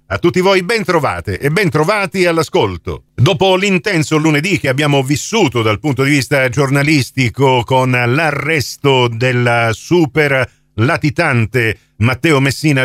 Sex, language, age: male, Italian, 50-69